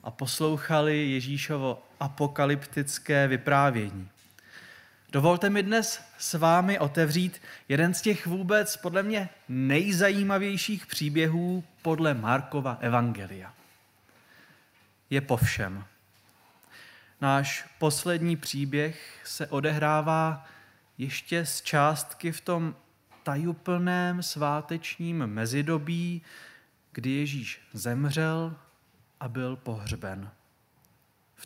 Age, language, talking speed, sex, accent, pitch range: 20-39, Czech, 85 wpm, male, native, 125-165 Hz